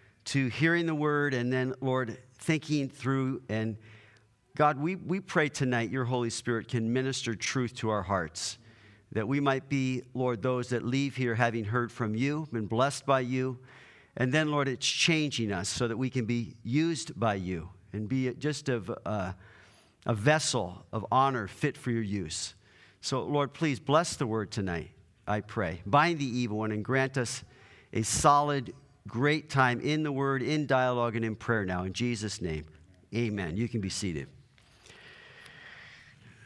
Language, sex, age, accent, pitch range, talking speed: English, male, 50-69, American, 115-145 Hz, 175 wpm